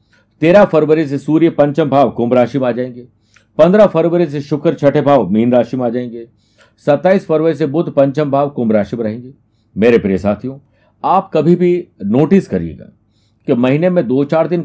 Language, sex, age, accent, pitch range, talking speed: Hindi, male, 50-69, native, 115-150 Hz, 190 wpm